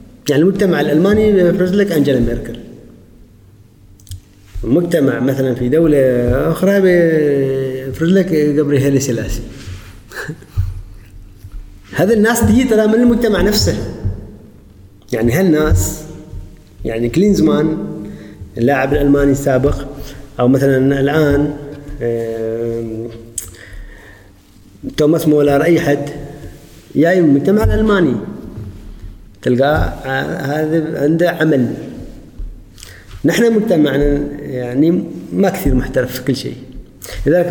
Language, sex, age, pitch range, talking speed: Arabic, male, 30-49, 115-155 Hz, 90 wpm